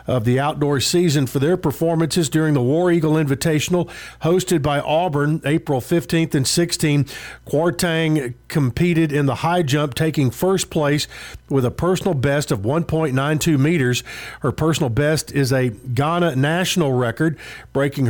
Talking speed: 145 wpm